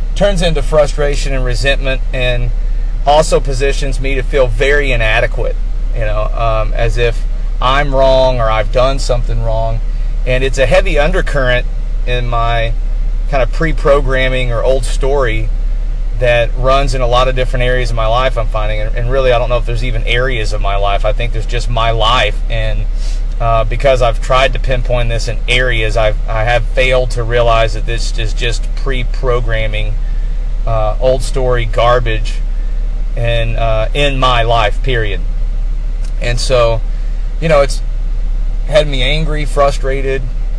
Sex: male